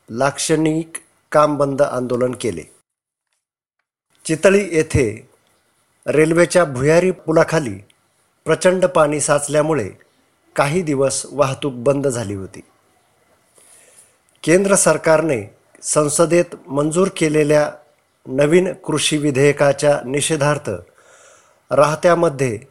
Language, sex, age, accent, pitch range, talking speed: Marathi, male, 50-69, native, 140-165 Hz, 75 wpm